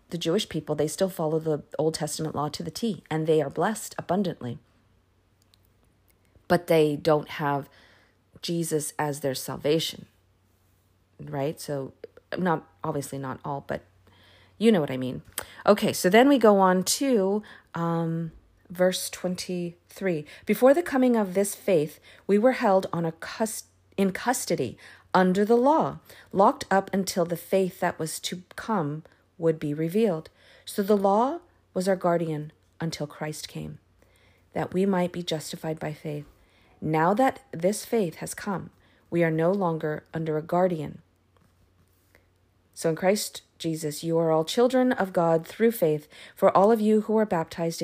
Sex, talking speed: female, 155 wpm